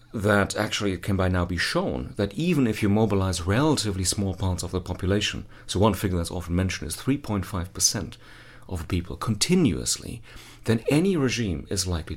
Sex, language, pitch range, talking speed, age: male, English, 90-115 Hz, 175 wpm, 40-59